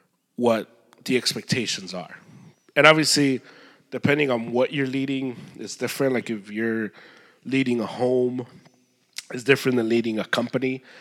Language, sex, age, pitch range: English, male, 30-49, 115-135 Hz